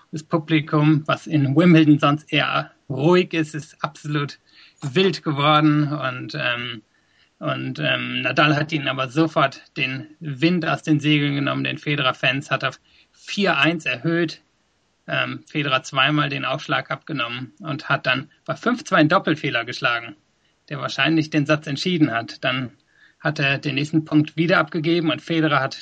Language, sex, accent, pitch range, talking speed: German, male, German, 140-160 Hz, 150 wpm